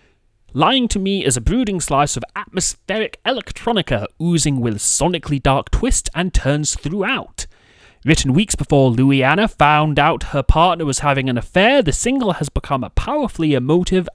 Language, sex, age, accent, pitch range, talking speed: English, male, 30-49, British, 120-180 Hz, 160 wpm